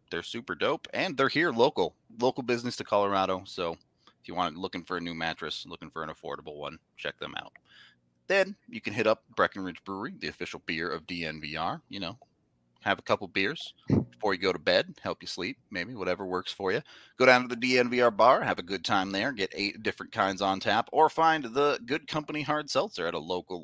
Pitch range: 80-115 Hz